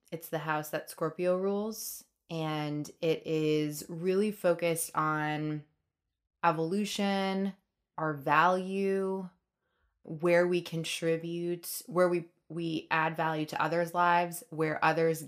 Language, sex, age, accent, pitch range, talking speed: English, female, 20-39, American, 150-175 Hz, 110 wpm